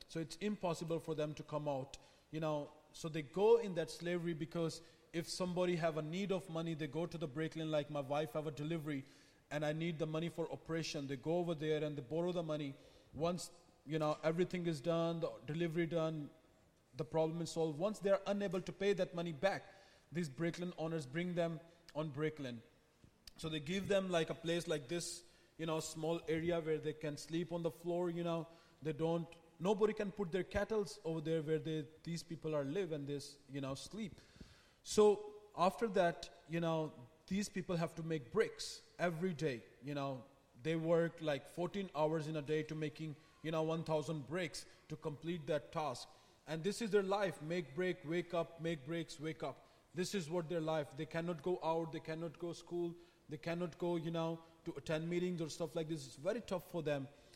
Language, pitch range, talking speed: English, 155-175 Hz, 210 wpm